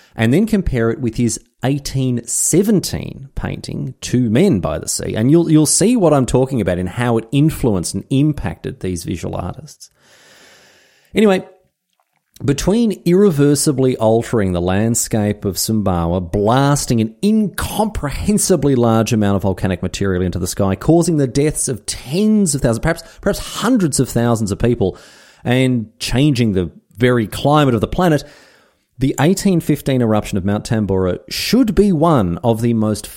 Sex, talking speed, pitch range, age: male, 150 wpm, 110-165 Hz, 30-49